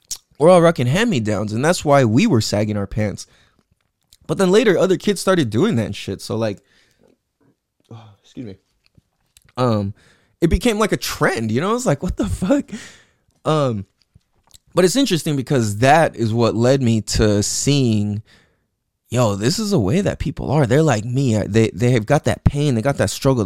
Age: 20-39